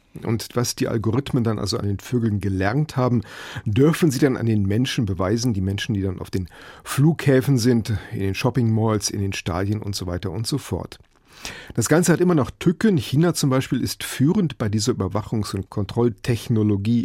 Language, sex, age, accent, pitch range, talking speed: German, male, 40-59, German, 100-125 Hz, 195 wpm